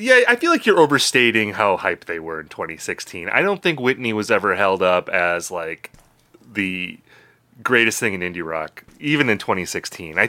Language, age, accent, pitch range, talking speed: English, 30-49, American, 100-135 Hz, 200 wpm